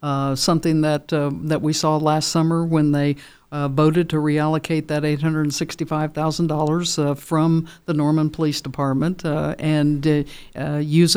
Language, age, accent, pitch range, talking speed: English, 60-79, American, 150-175 Hz, 170 wpm